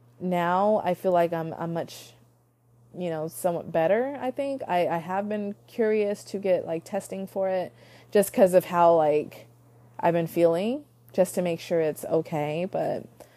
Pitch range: 155-190 Hz